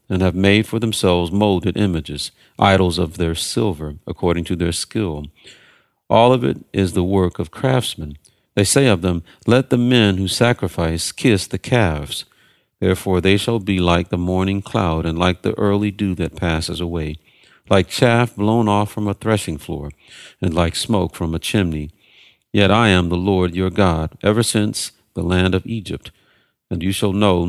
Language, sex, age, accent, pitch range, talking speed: English, male, 50-69, American, 85-105 Hz, 180 wpm